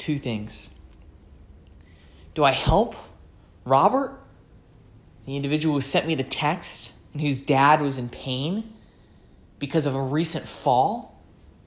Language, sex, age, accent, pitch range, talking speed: English, male, 20-39, American, 100-155 Hz, 125 wpm